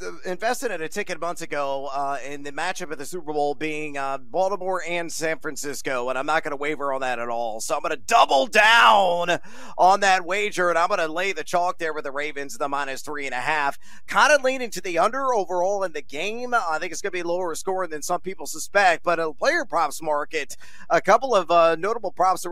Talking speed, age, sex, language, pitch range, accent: 245 wpm, 30-49, male, English, 160-225 Hz, American